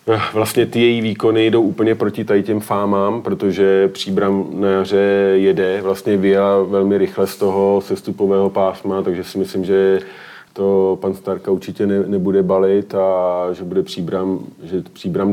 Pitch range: 95-100 Hz